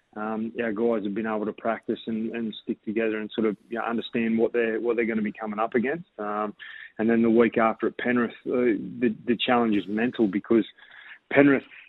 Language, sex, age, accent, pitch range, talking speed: English, male, 20-39, Australian, 110-120 Hz, 220 wpm